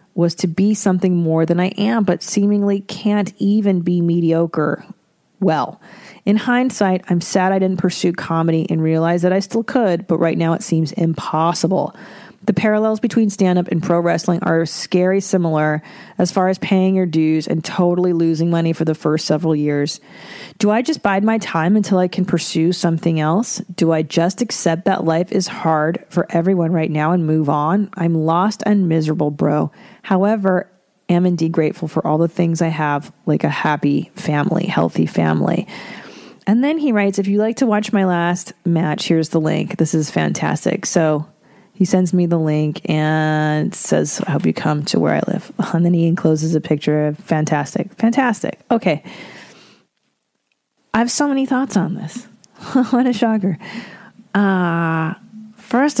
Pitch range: 165-205 Hz